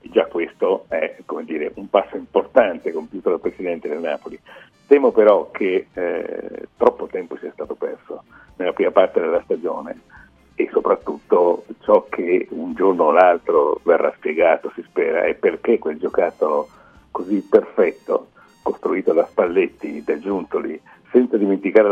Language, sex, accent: Italian, male, native